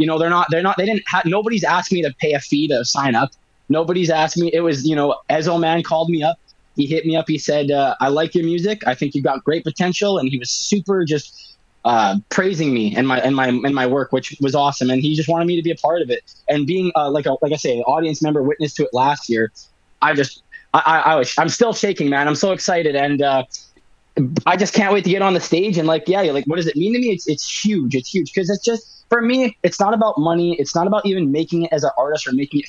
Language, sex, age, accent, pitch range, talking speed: English, male, 20-39, American, 145-195 Hz, 280 wpm